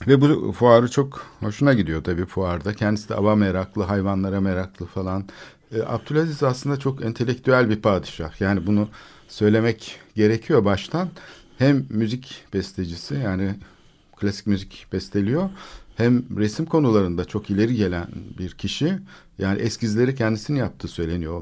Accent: native